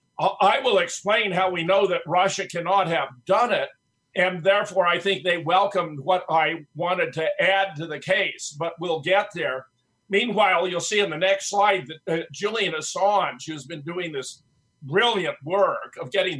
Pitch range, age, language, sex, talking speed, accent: 150-195 Hz, 50-69, English, male, 180 wpm, American